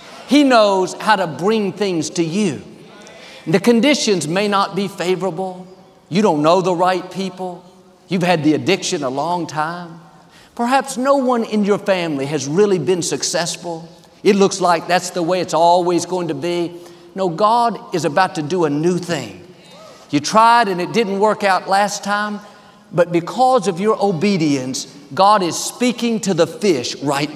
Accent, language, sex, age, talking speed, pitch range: American, English, male, 50-69, 170 wpm, 175-235 Hz